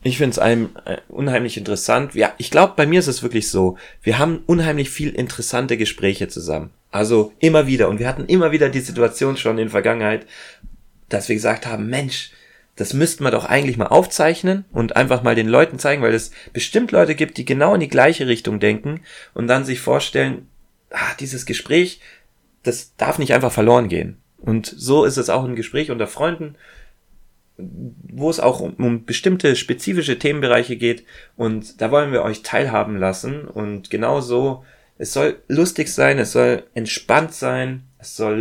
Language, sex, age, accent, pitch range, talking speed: German, male, 30-49, German, 105-135 Hz, 180 wpm